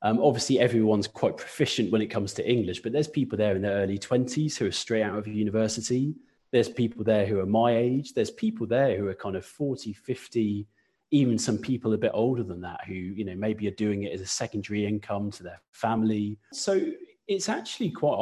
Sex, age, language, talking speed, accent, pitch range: male, 30-49, English, 215 wpm, British, 100-120 Hz